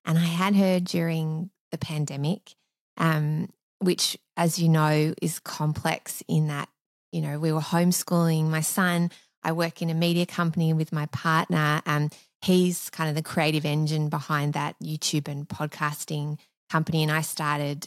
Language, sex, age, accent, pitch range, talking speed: English, female, 20-39, Australian, 150-175 Hz, 160 wpm